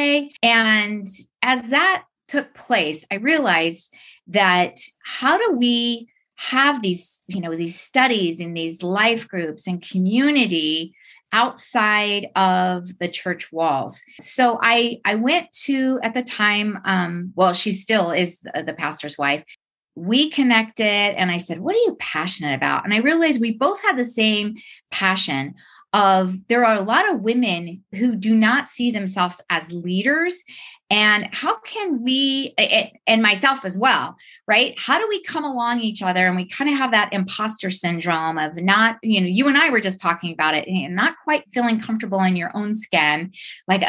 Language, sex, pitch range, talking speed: English, female, 180-250 Hz, 170 wpm